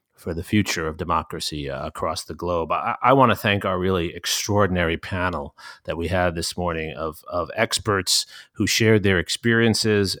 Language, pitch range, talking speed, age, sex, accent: English, 85-105 Hz, 170 wpm, 40-59, male, American